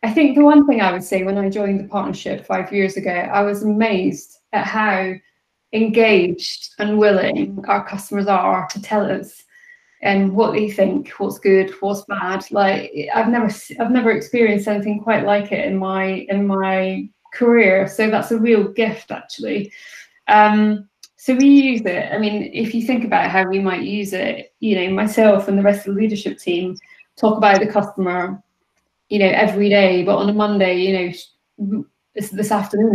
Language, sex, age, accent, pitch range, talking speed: English, female, 20-39, British, 195-215 Hz, 185 wpm